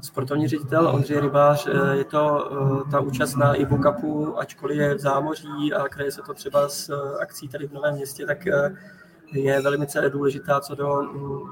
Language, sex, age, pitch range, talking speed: Czech, male, 20-39, 135-145 Hz, 160 wpm